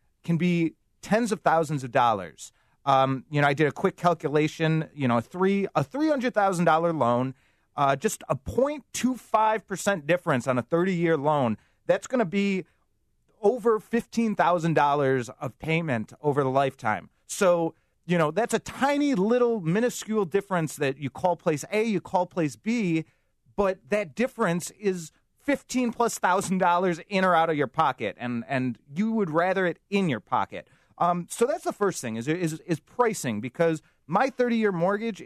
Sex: male